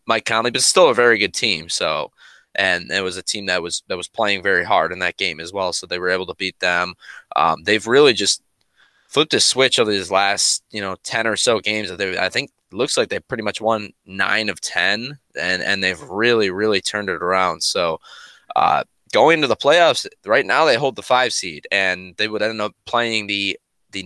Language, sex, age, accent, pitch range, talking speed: English, male, 20-39, American, 95-110 Hz, 225 wpm